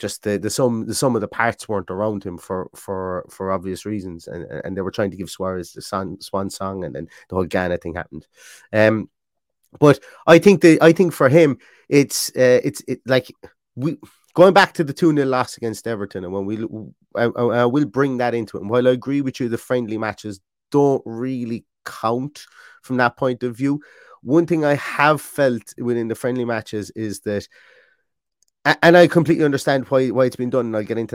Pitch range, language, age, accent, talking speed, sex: 110-140 Hz, English, 30-49, British, 215 wpm, male